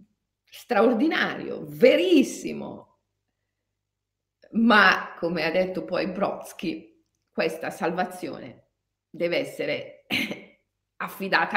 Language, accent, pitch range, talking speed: Italian, native, 165-250 Hz, 65 wpm